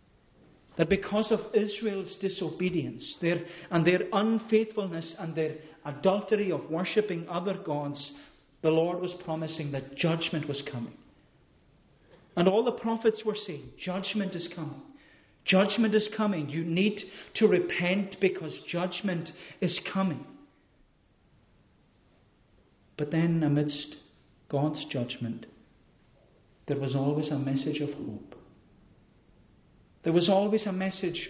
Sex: male